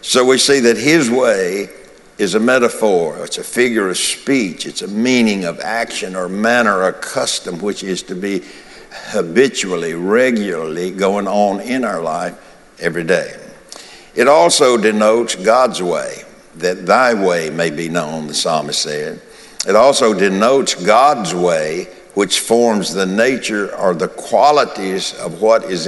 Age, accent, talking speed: 60-79, American, 150 wpm